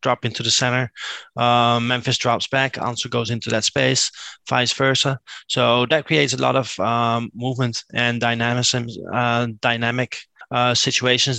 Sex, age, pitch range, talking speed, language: male, 20-39, 115-125 Hz, 155 wpm, English